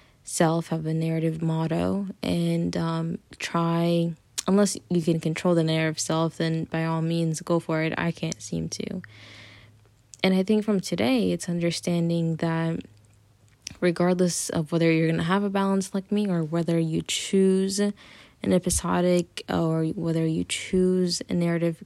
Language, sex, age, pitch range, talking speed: English, female, 10-29, 160-180 Hz, 155 wpm